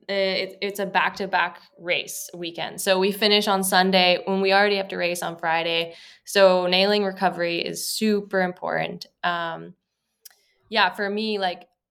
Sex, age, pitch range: female, 20-39, 170-195 Hz